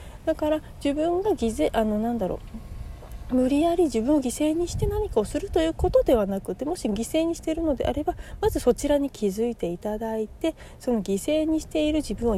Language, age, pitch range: Japanese, 40-59, 205-295 Hz